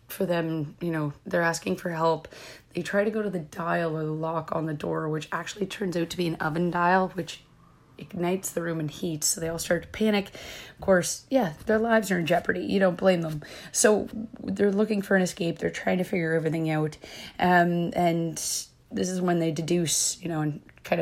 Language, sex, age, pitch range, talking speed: English, female, 30-49, 160-185 Hz, 220 wpm